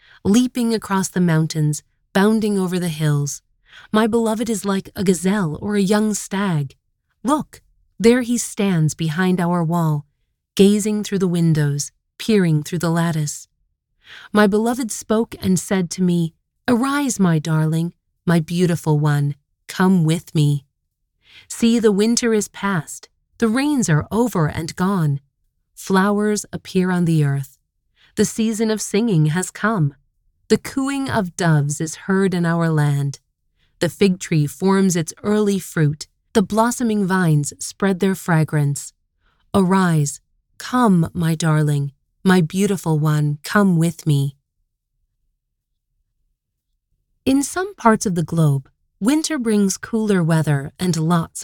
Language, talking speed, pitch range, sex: English, 135 wpm, 155-210 Hz, female